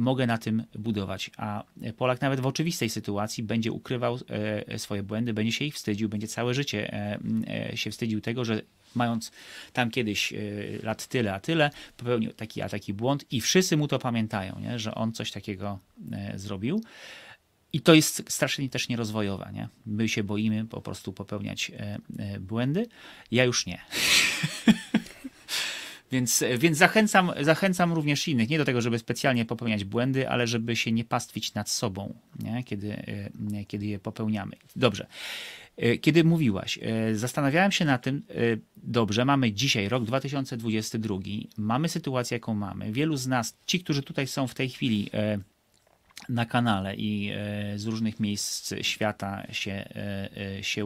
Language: Polish